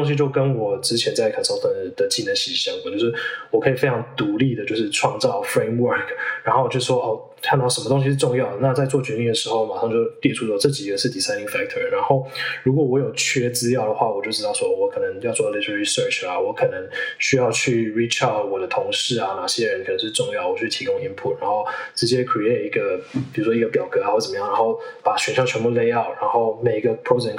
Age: 20-39